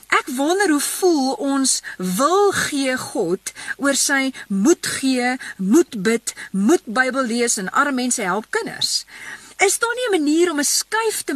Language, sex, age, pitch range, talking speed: English, female, 40-59, 225-325 Hz, 165 wpm